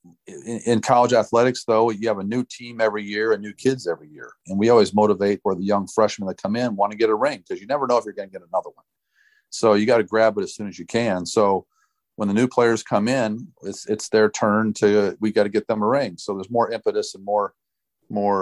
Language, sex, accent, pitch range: English, male, American, 95-115 Hz